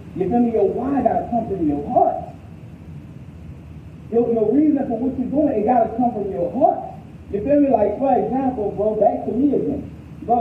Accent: American